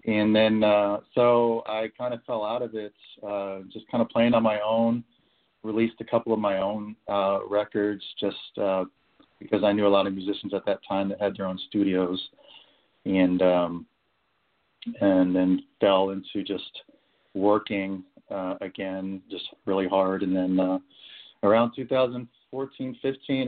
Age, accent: 40-59, American